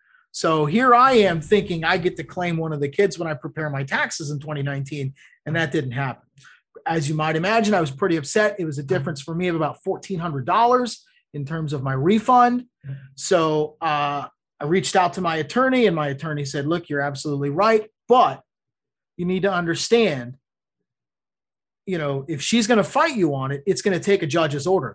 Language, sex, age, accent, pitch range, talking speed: English, male, 30-49, American, 150-220 Hz, 200 wpm